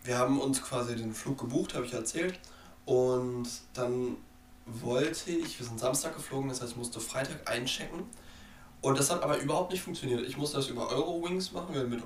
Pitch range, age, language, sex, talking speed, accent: 120-140 Hz, 20-39, German, male, 195 wpm, German